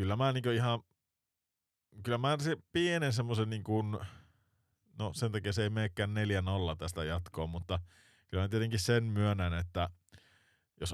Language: Finnish